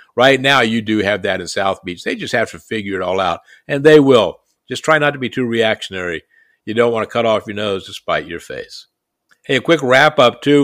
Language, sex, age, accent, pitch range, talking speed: English, male, 50-69, American, 115-135 Hz, 250 wpm